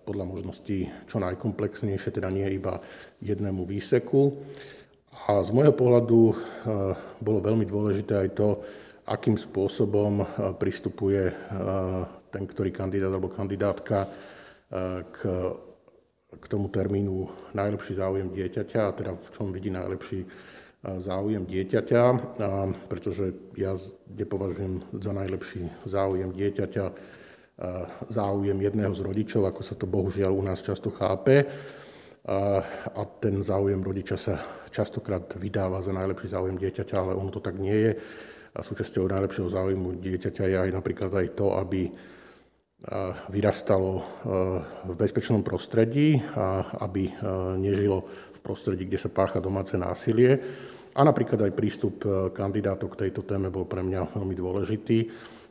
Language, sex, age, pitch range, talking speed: Slovak, male, 50-69, 95-105 Hz, 120 wpm